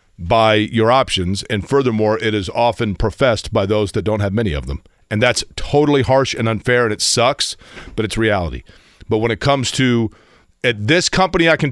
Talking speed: 200 wpm